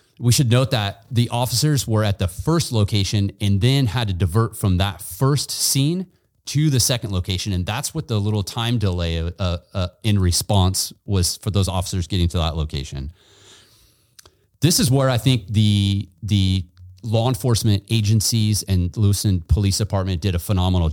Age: 30-49